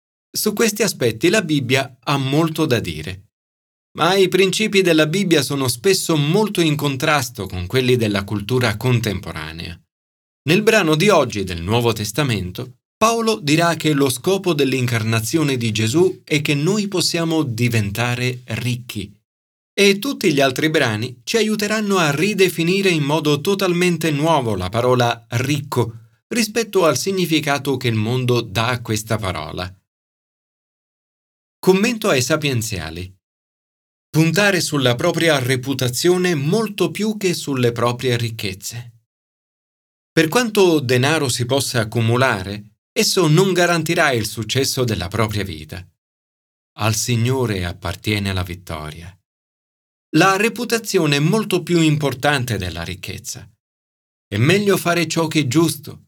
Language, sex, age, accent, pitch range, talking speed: Italian, male, 30-49, native, 110-165 Hz, 125 wpm